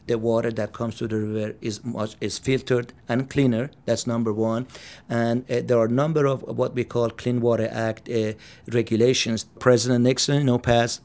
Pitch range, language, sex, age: 115-130 Hz, English, male, 50-69